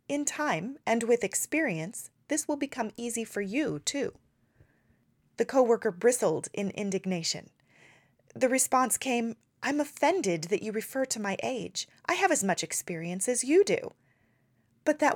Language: English